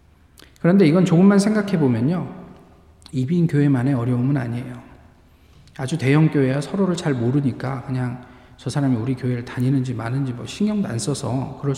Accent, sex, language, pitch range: native, male, Korean, 125-175 Hz